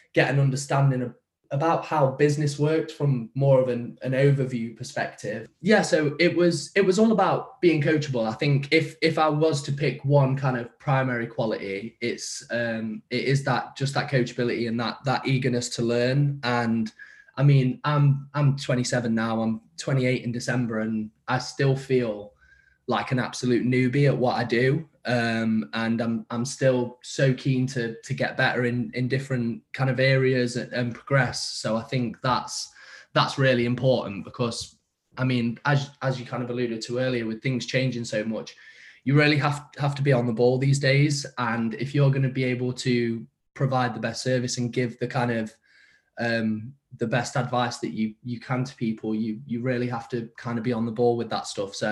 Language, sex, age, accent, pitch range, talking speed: English, male, 20-39, British, 120-140 Hz, 200 wpm